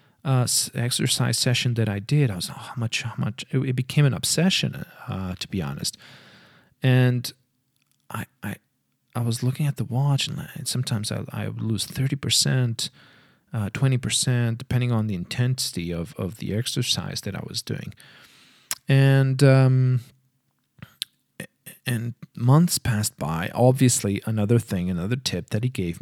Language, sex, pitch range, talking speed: Portuguese, male, 100-130 Hz, 150 wpm